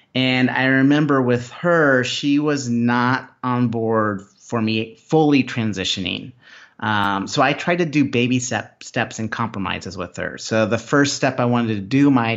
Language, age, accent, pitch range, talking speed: English, 30-49, American, 100-130 Hz, 170 wpm